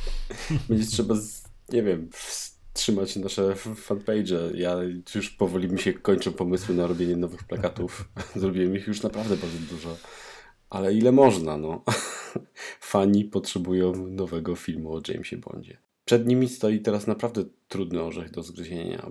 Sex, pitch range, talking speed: male, 85-100 Hz, 140 wpm